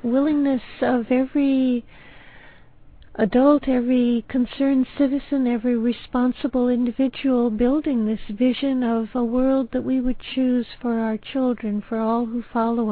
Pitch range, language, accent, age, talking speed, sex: 235-270 Hz, English, American, 60-79, 125 wpm, female